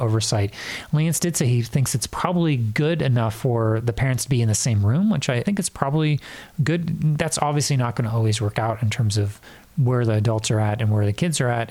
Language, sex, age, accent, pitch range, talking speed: English, male, 30-49, American, 110-140 Hz, 240 wpm